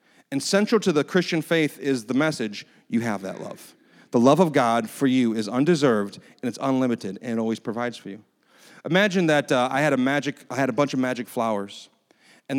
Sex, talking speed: male, 215 wpm